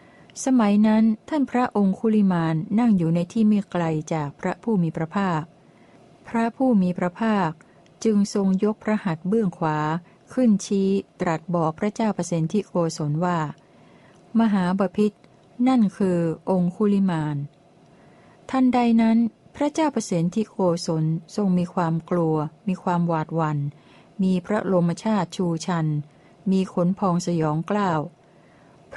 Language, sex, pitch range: Thai, female, 165-210 Hz